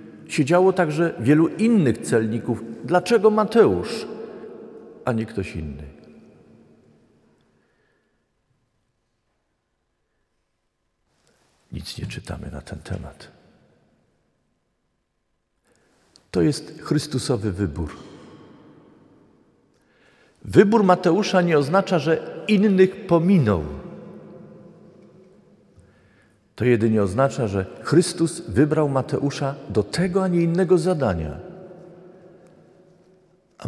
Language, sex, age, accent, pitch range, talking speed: Polish, male, 50-69, native, 105-175 Hz, 75 wpm